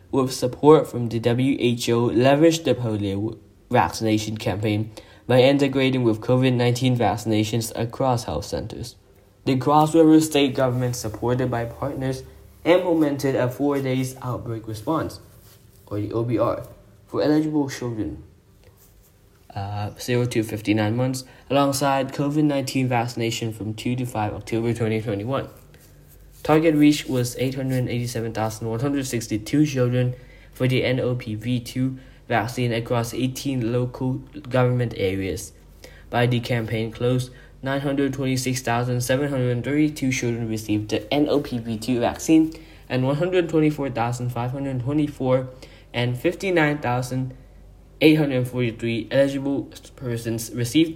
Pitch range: 110-135 Hz